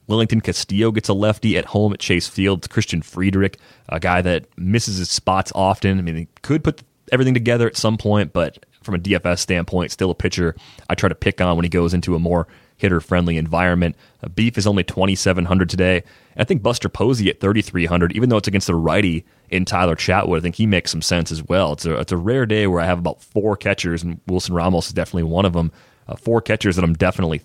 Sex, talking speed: male, 230 wpm